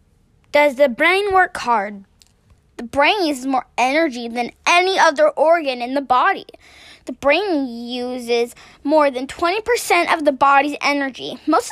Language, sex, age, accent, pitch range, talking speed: English, female, 10-29, American, 250-345 Hz, 145 wpm